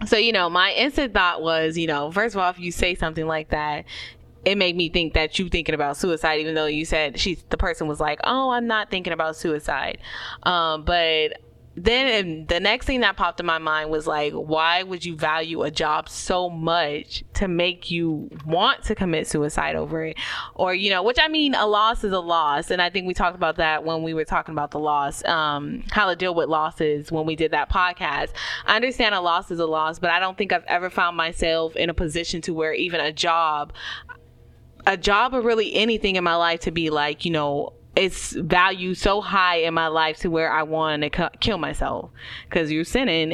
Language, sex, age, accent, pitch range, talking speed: English, female, 20-39, American, 155-185 Hz, 225 wpm